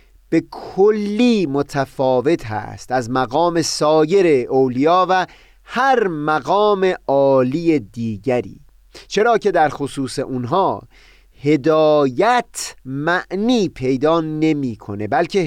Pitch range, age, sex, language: 135-190 Hz, 30-49, male, Persian